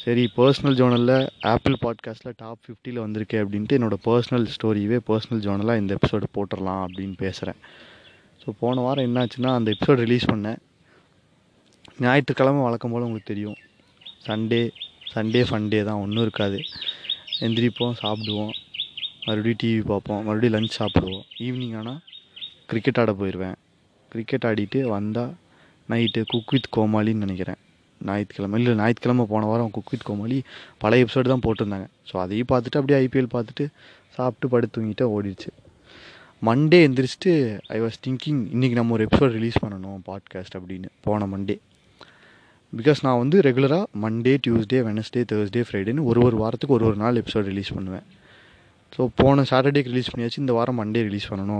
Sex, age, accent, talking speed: male, 20-39, native, 140 wpm